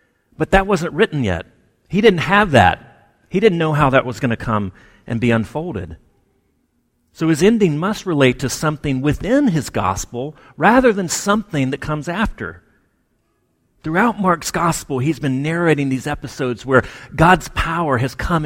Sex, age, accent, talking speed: male, 40-59, American, 165 wpm